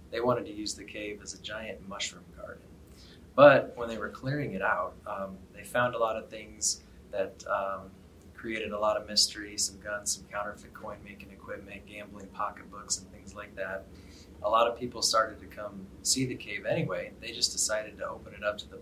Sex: male